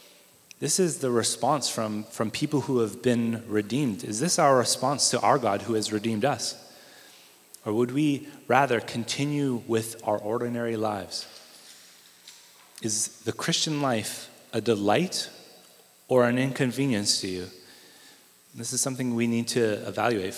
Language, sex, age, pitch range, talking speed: English, male, 30-49, 110-130 Hz, 145 wpm